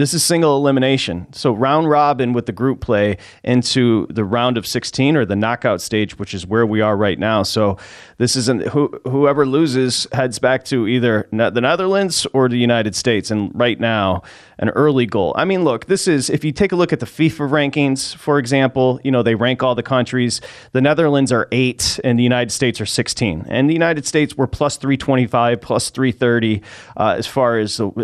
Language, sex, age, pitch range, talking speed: English, male, 30-49, 105-135 Hz, 190 wpm